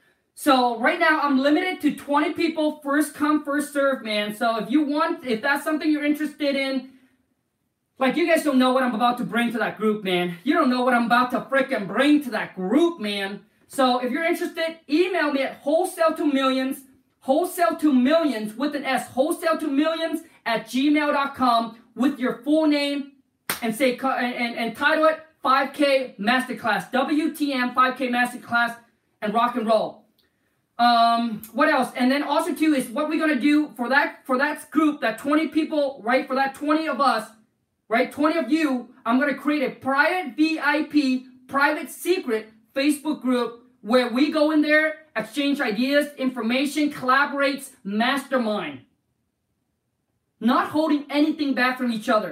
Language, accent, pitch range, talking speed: English, American, 245-305 Hz, 165 wpm